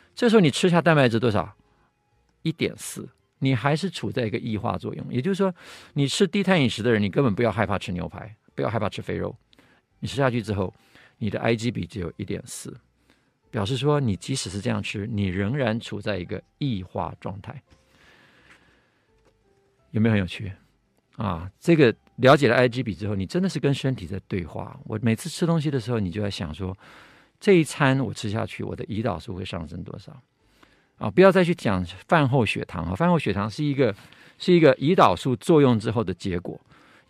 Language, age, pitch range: Chinese, 50-69, 105-150 Hz